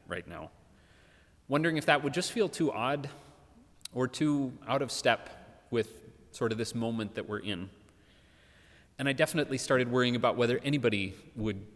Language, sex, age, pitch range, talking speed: English, male, 30-49, 95-140 Hz, 165 wpm